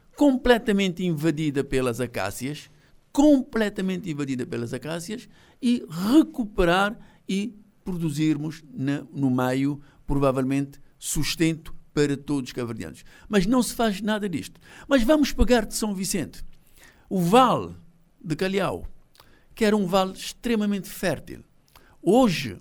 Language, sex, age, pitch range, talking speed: Portuguese, male, 60-79, 150-220 Hz, 115 wpm